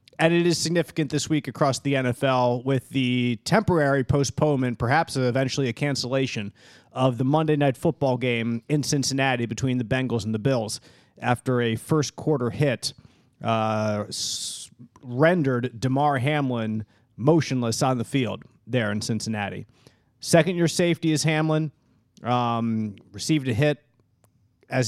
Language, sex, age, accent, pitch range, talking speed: English, male, 30-49, American, 120-150 Hz, 135 wpm